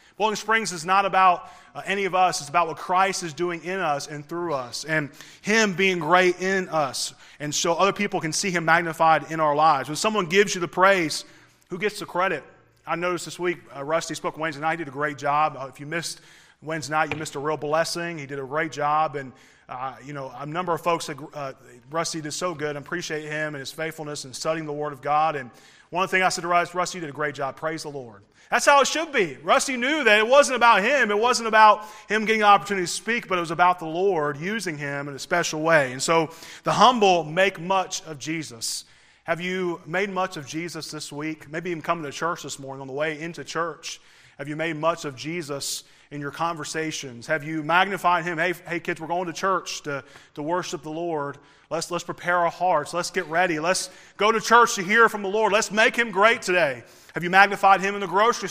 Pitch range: 150-190 Hz